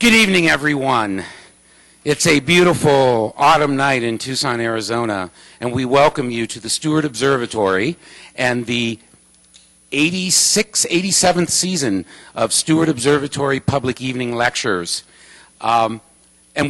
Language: English